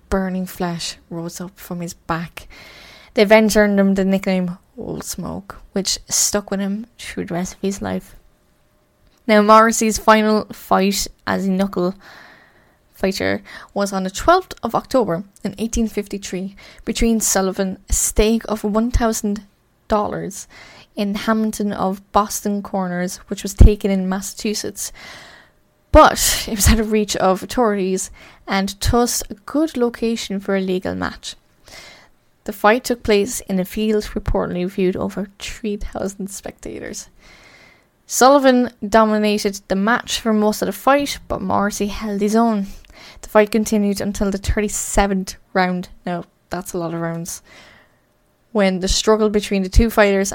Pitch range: 190-220 Hz